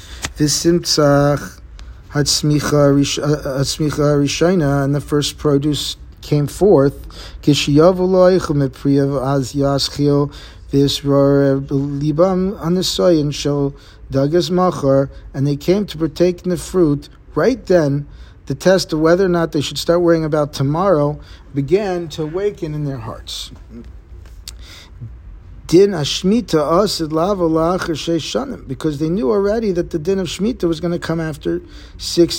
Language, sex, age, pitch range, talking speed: English, male, 50-69, 135-175 Hz, 120 wpm